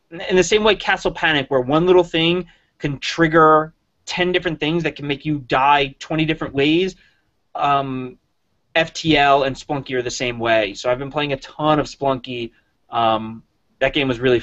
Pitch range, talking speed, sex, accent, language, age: 120-145 Hz, 185 wpm, male, American, English, 20-39